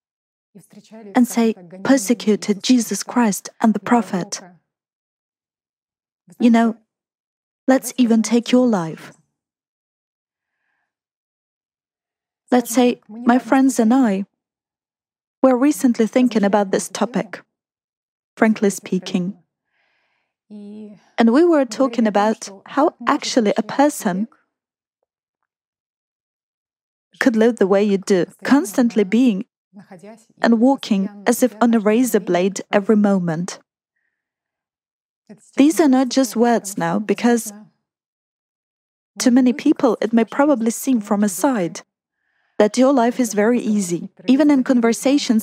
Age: 20-39